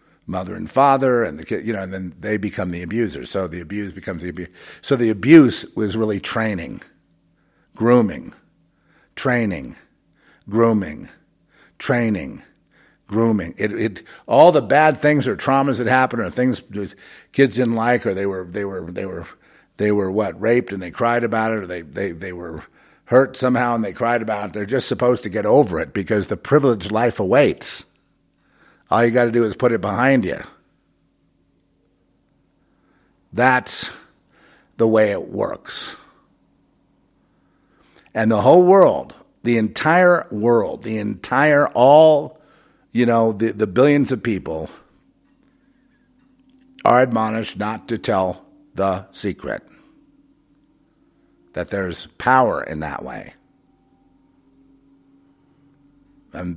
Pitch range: 105-135 Hz